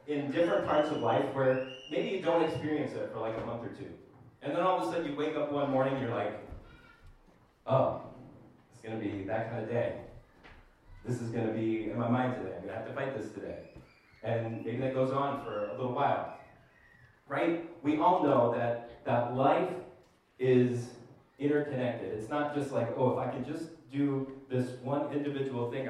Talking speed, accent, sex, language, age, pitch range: 205 wpm, American, male, English, 30-49, 120-145 Hz